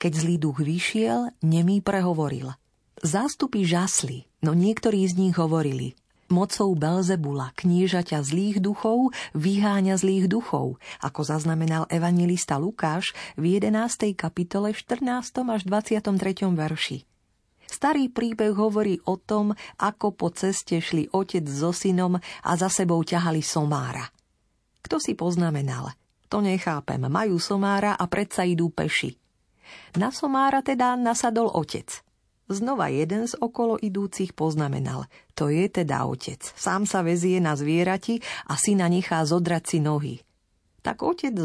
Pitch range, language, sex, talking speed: 160-205 Hz, Slovak, female, 125 wpm